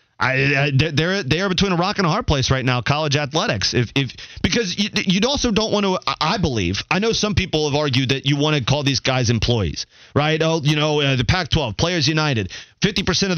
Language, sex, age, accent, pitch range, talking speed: English, male, 30-49, American, 130-165 Hz, 230 wpm